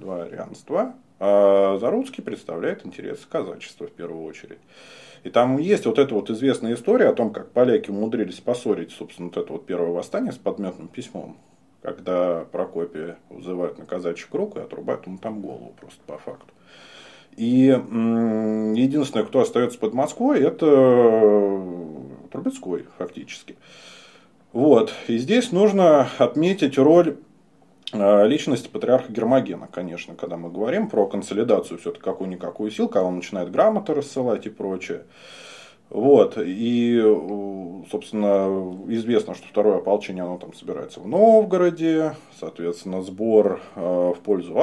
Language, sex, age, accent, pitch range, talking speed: Russian, male, 30-49, native, 90-135 Hz, 135 wpm